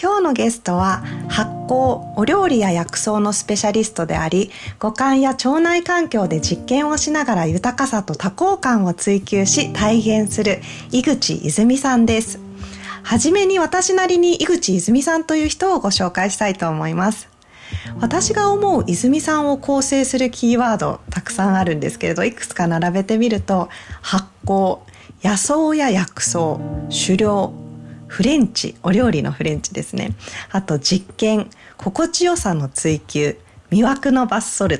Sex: female